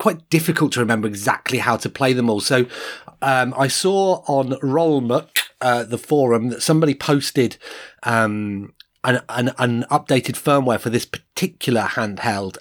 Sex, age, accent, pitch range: male, 30-49, British, 120-160 Hz